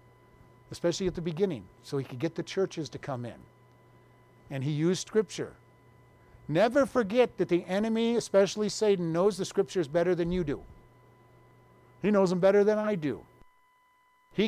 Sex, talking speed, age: male, 160 wpm, 50-69